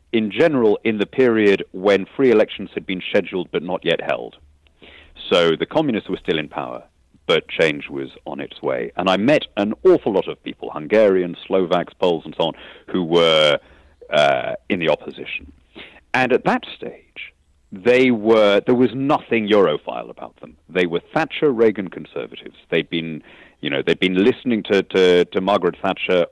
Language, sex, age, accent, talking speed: English, male, 40-59, British, 175 wpm